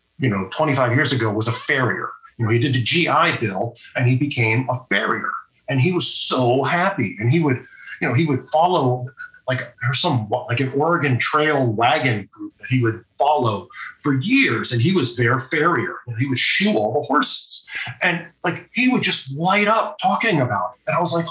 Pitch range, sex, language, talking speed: 120-155 Hz, male, English, 210 wpm